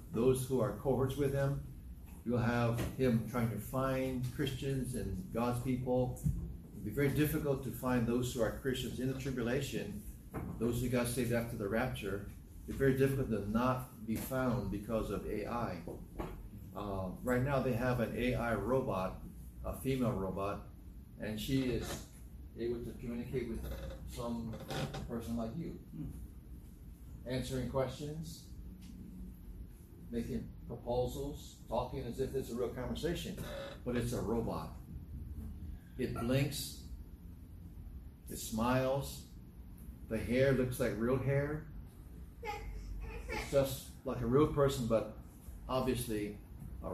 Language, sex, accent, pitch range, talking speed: English, male, American, 100-130 Hz, 130 wpm